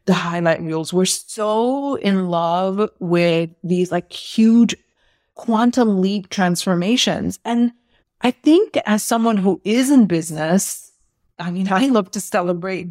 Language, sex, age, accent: English, female, 30-49, American